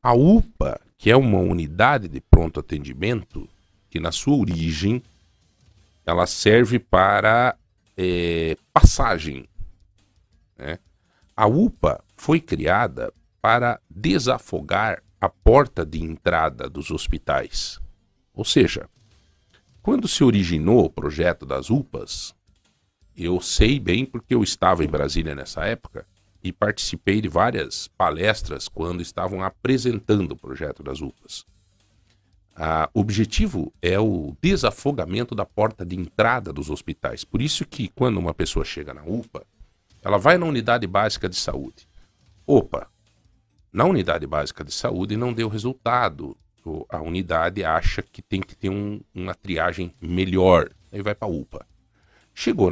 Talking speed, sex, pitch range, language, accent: 130 wpm, male, 80-105 Hz, Portuguese, Brazilian